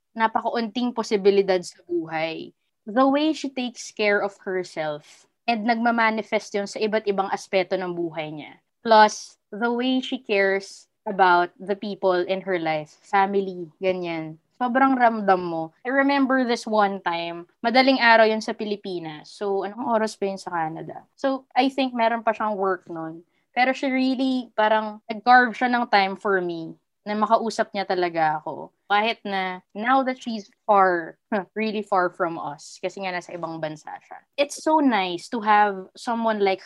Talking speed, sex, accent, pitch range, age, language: 160 wpm, female, Filipino, 185-230 Hz, 20-39, English